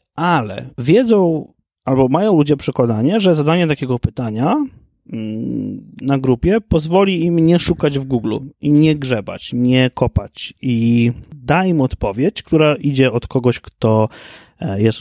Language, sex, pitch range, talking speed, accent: Polish, male, 115-160 Hz, 130 wpm, native